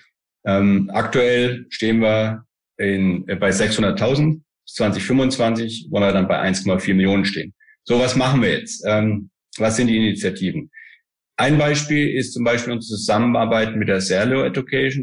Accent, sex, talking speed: German, male, 150 wpm